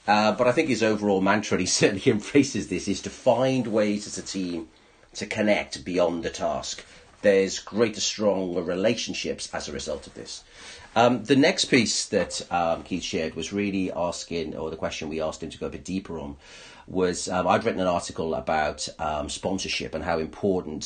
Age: 40-59